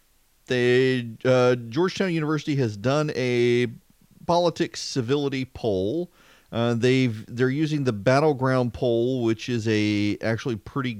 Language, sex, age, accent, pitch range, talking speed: English, male, 40-59, American, 115-175 Hz, 120 wpm